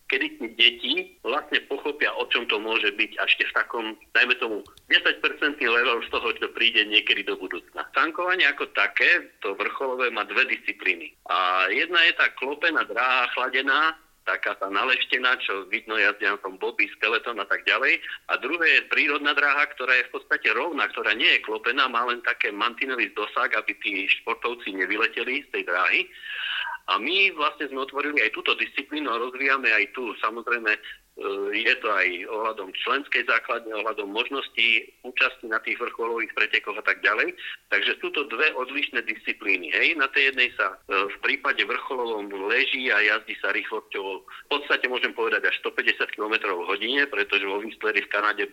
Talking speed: 170 wpm